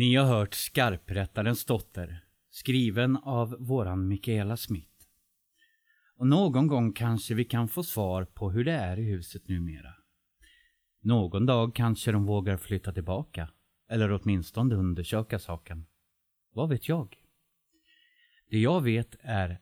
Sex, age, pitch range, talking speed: male, 30-49, 95-135 Hz, 130 wpm